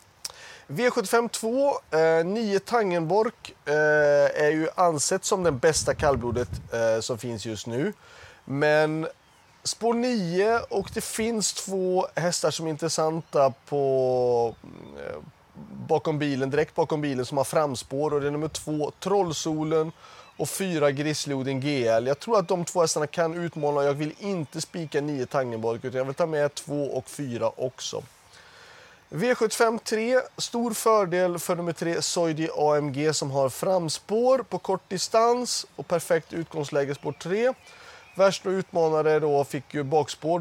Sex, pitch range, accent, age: male, 140-190 Hz, native, 30-49